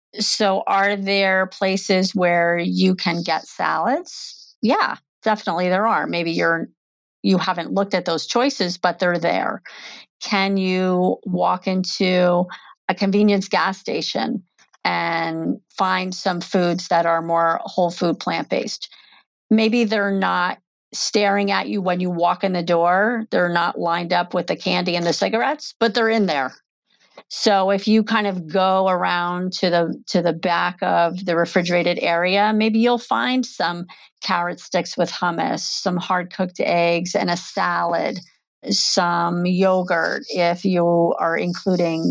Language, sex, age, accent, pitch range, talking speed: English, female, 40-59, American, 170-200 Hz, 150 wpm